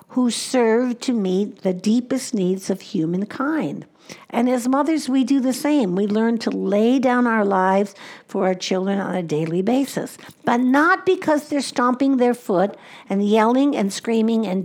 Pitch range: 205-275 Hz